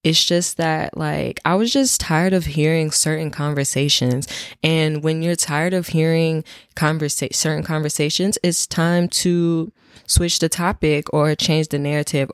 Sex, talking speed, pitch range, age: female, 145 wpm, 140-165 Hz, 10-29